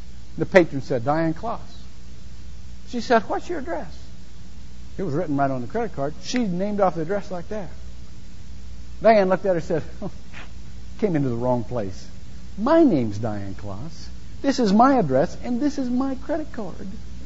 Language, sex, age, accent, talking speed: English, male, 60-79, American, 175 wpm